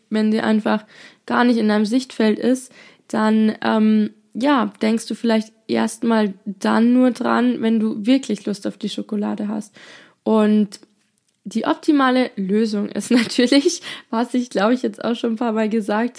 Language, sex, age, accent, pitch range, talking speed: German, female, 20-39, German, 210-240 Hz, 165 wpm